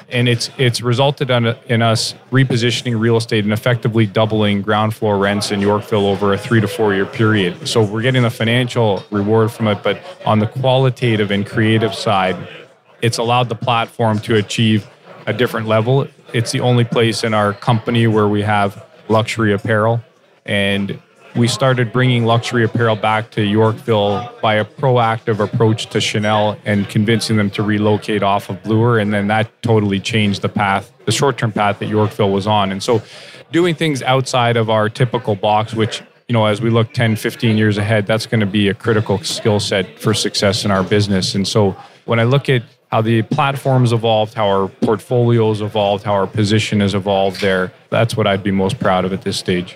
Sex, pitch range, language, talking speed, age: male, 105-120 Hz, English, 190 wpm, 20-39